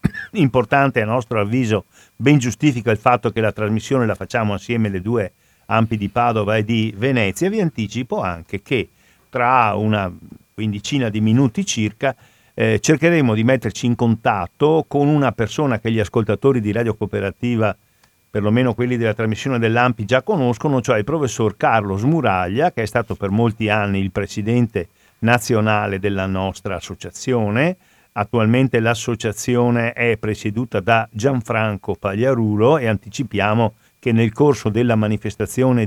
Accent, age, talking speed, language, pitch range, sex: native, 50-69, 140 wpm, Italian, 105-125 Hz, male